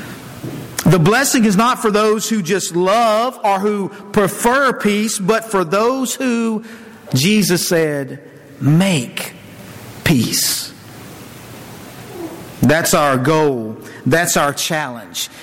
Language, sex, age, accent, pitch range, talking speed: English, male, 50-69, American, 155-225 Hz, 105 wpm